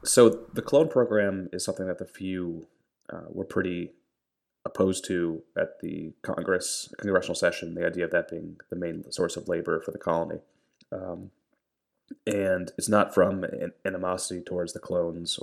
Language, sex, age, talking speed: English, male, 30-49, 165 wpm